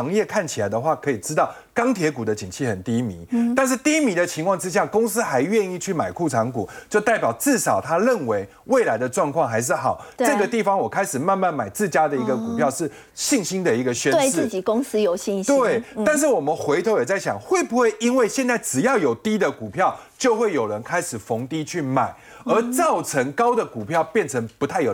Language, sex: Chinese, male